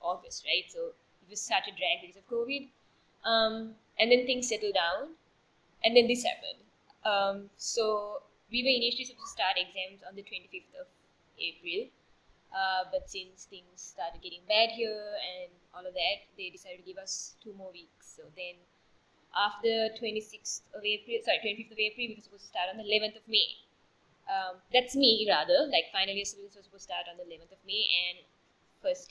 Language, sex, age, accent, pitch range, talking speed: English, female, 20-39, Indian, 185-250 Hz, 195 wpm